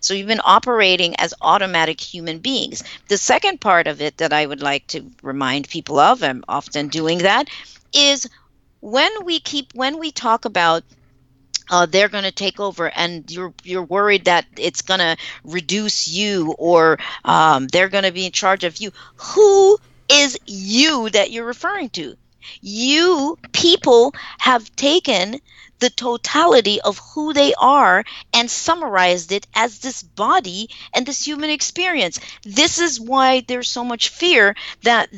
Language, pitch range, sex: English, 175-280 Hz, female